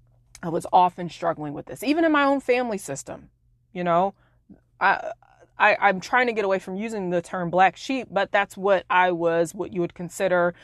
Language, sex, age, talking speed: English, female, 20-39, 205 wpm